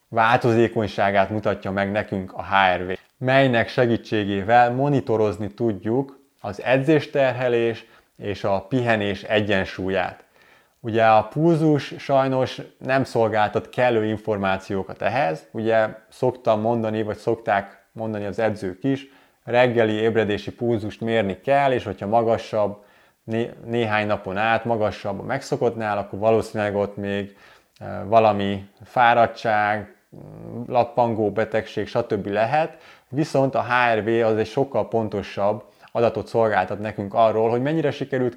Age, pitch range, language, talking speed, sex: 20-39, 105-120 Hz, Hungarian, 115 wpm, male